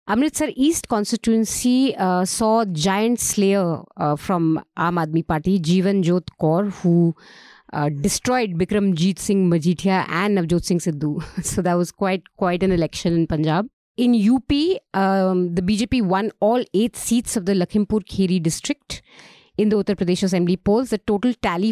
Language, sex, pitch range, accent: English, female, 175-220 Hz, Indian